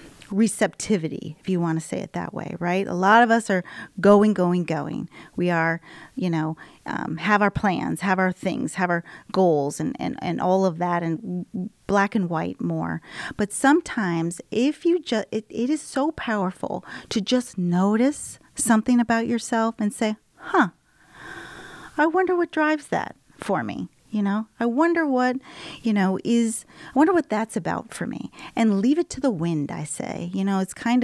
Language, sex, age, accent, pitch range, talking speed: English, female, 40-59, American, 185-255 Hz, 185 wpm